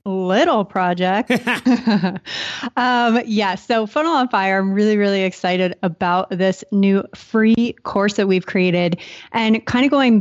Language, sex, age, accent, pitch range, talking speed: English, female, 30-49, American, 185-230 Hz, 140 wpm